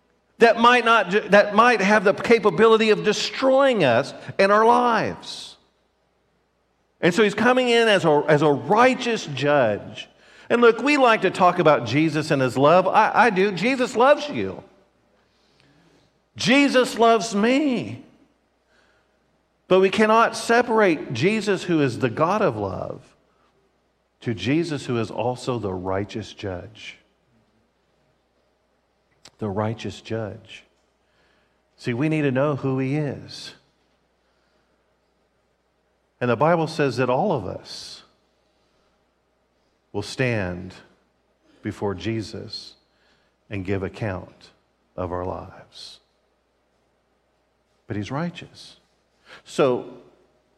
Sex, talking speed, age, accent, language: male, 115 wpm, 50-69, American, English